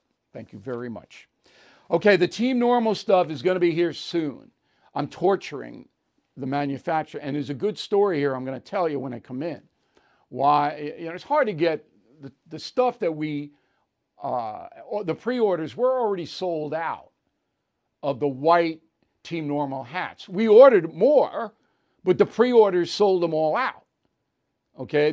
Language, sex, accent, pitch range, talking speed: English, male, American, 145-210 Hz, 165 wpm